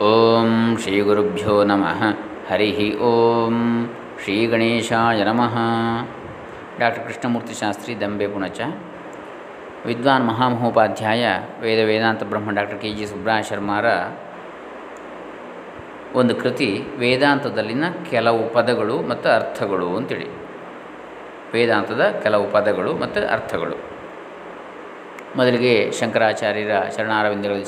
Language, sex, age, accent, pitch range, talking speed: Kannada, male, 20-39, native, 100-120 Hz, 90 wpm